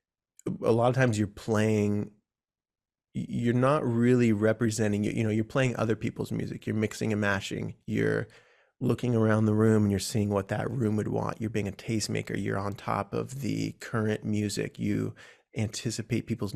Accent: American